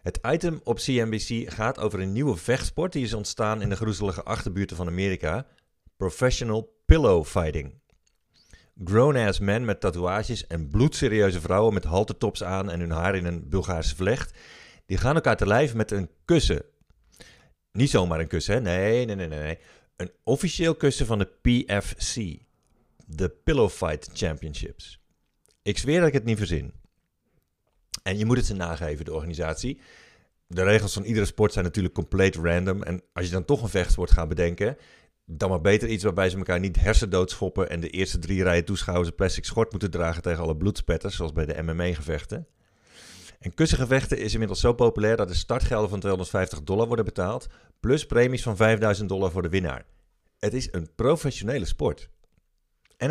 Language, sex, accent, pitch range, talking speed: Dutch, male, Dutch, 85-115 Hz, 175 wpm